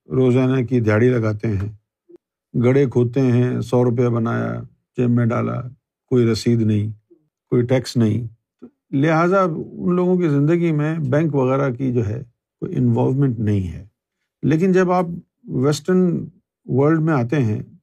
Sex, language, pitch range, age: male, Urdu, 115-155 Hz, 50-69